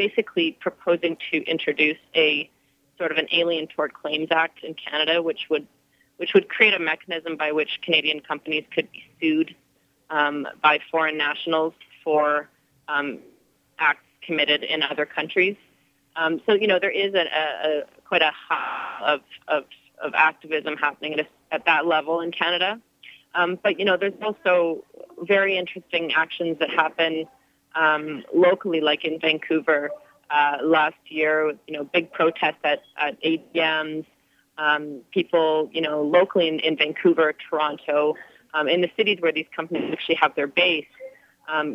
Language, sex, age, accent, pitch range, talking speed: English, female, 30-49, American, 150-170 Hz, 155 wpm